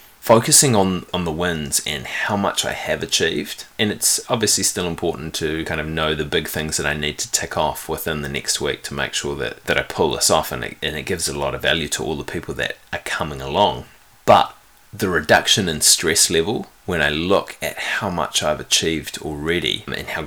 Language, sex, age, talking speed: English, male, 20-39, 220 wpm